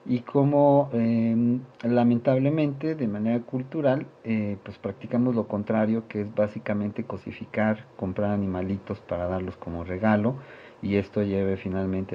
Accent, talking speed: Mexican, 130 wpm